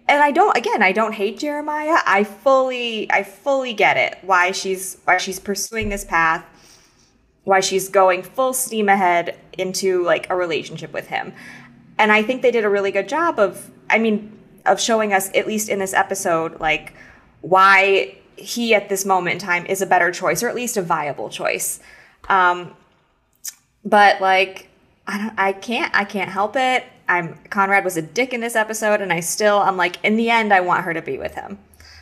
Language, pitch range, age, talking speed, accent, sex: English, 170-215 Hz, 20-39, 195 wpm, American, female